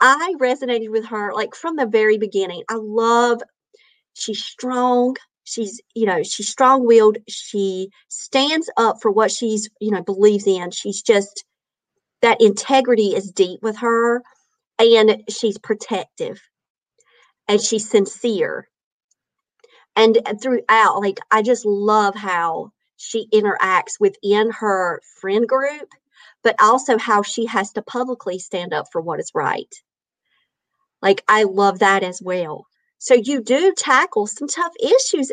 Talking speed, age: 140 wpm, 50-69